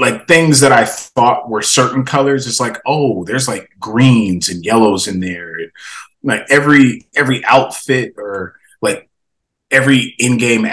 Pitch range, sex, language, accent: 100-120 Hz, male, English, American